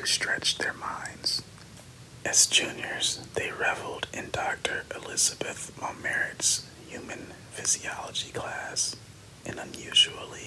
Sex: male